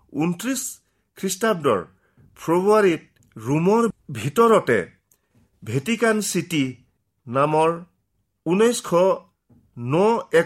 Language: English